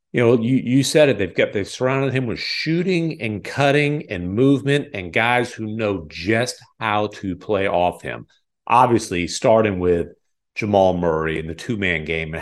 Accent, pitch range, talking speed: American, 100-130 Hz, 185 wpm